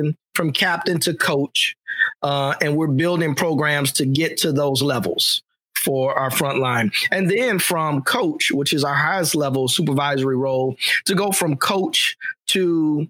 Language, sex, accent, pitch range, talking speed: English, male, American, 135-175 Hz, 150 wpm